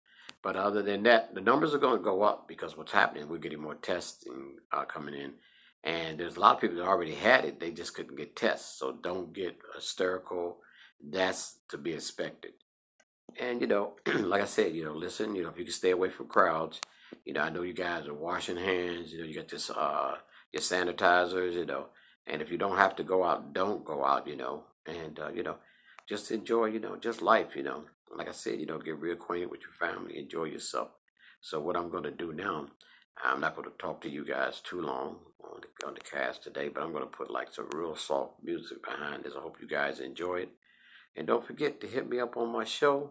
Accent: American